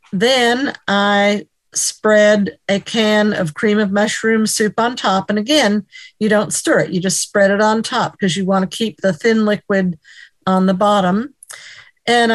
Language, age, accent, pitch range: English, 50-69, American, 190-230 Hz